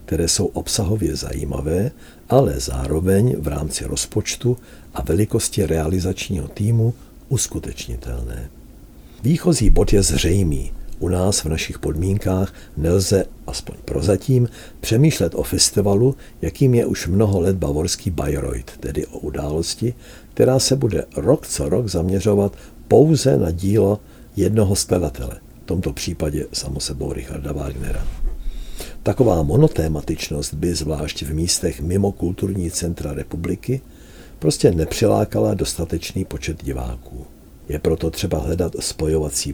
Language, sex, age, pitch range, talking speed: Czech, male, 60-79, 75-100 Hz, 115 wpm